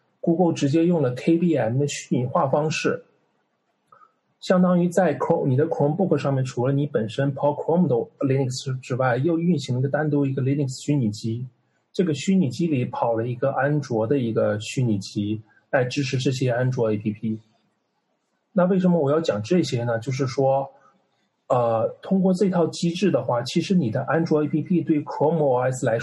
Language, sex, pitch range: Chinese, male, 125-165 Hz